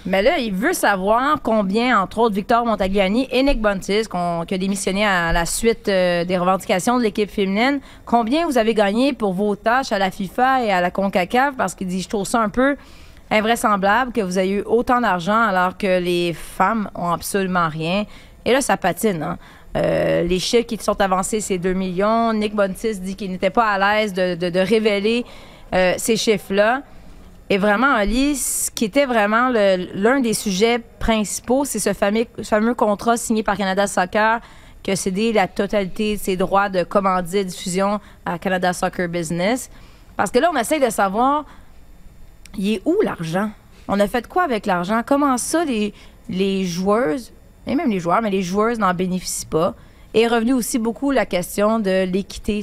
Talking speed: 190 wpm